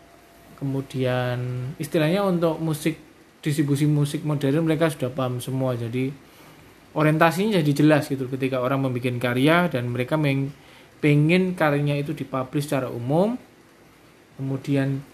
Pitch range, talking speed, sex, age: 130-155 Hz, 120 wpm, male, 20-39